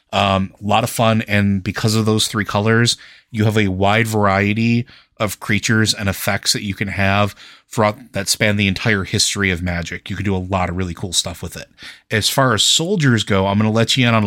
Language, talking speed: English, 230 wpm